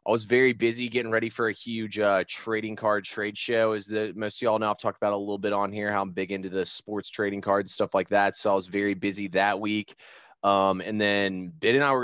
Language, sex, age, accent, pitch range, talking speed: English, male, 20-39, American, 100-115 Hz, 265 wpm